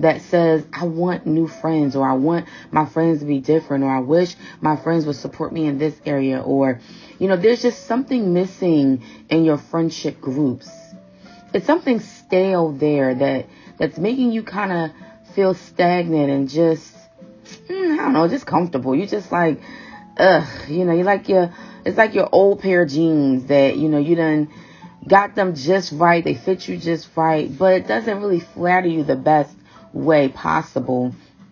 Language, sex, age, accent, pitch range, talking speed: English, female, 30-49, American, 150-200 Hz, 180 wpm